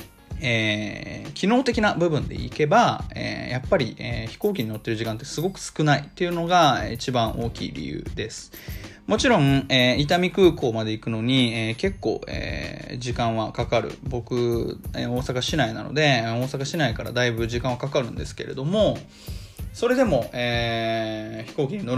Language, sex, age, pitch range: Japanese, male, 20-39, 110-140 Hz